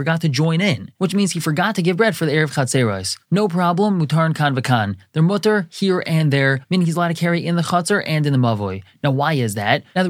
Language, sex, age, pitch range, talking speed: English, male, 20-39, 130-175 Hz, 250 wpm